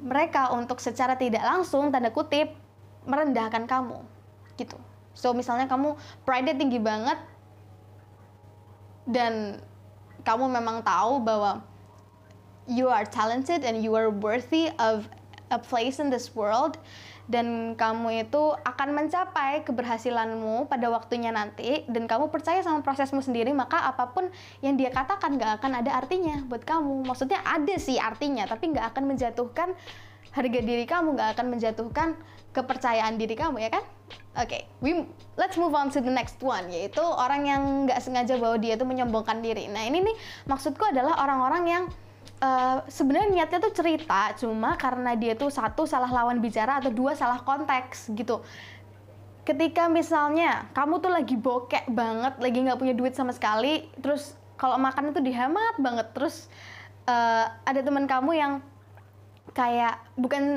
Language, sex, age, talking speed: Indonesian, female, 10-29, 150 wpm